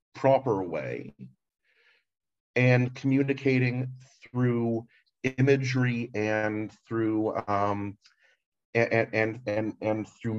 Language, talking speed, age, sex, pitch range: English, 80 wpm, 40-59, male, 105-125 Hz